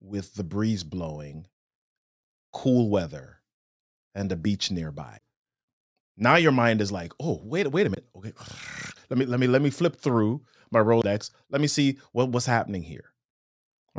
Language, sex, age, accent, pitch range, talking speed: English, male, 30-49, American, 105-150 Hz, 165 wpm